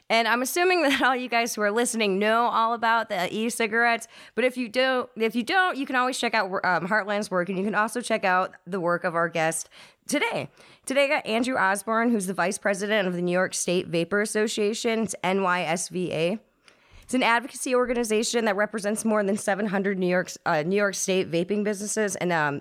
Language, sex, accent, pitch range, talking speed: English, female, American, 180-235 Hz, 210 wpm